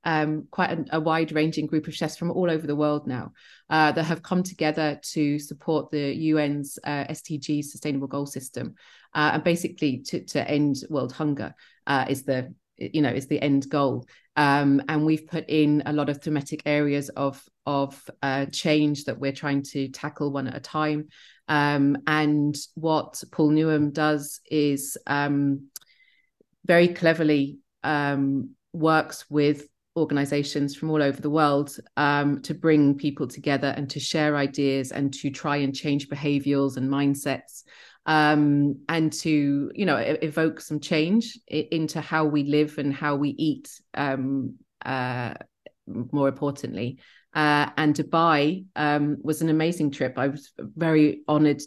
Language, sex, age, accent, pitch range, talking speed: English, female, 30-49, British, 140-155 Hz, 160 wpm